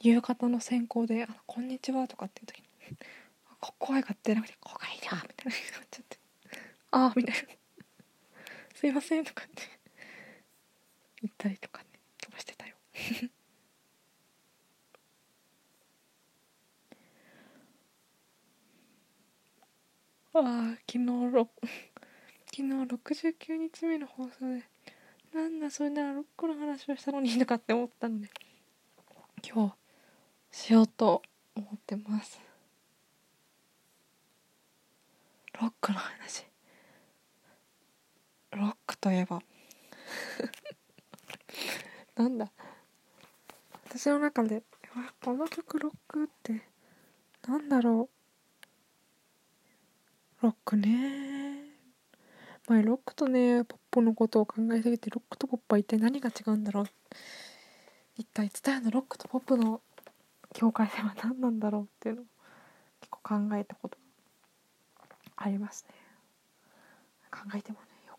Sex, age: female, 20-39